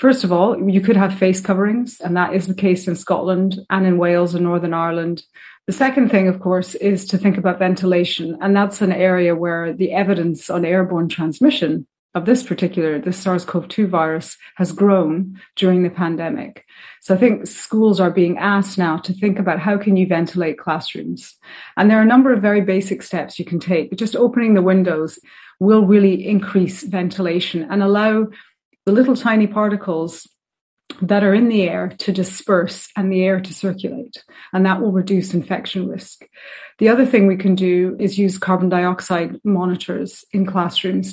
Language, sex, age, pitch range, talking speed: English, female, 30-49, 180-200 Hz, 185 wpm